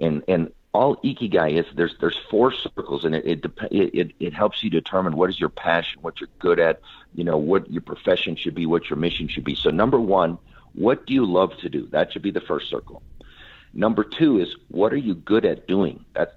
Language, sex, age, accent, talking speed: English, male, 50-69, American, 230 wpm